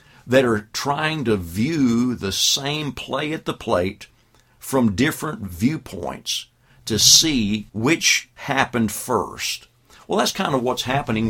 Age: 50-69